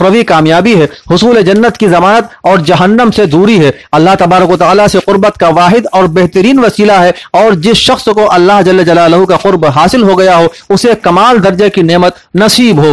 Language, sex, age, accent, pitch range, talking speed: Hindi, male, 40-59, native, 180-225 Hz, 170 wpm